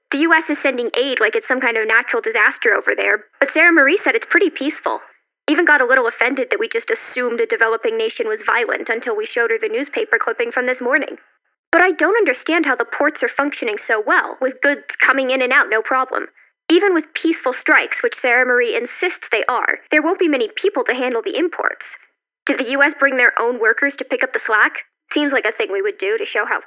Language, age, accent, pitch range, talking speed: English, 10-29, American, 255-400 Hz, 235 wpm